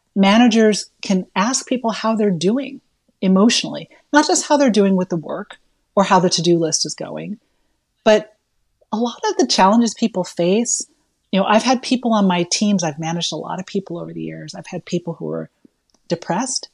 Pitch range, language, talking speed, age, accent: 170-220 Hz, English, 195 wpm, 40-59, American